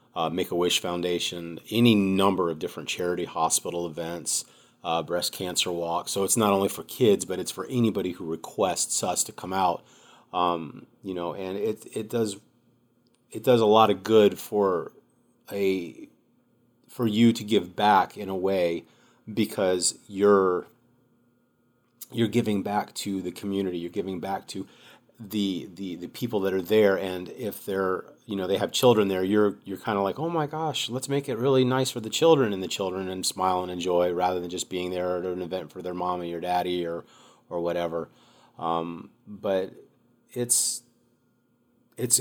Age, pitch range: 30-49, 90-115 Hz